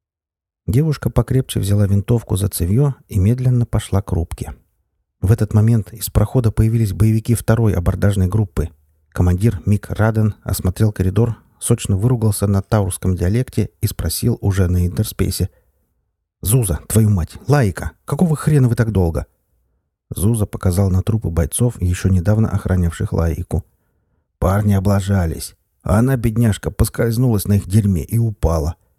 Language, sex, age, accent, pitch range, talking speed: Russian, male, 50-69, native, 90-110 Hz, 135 wpm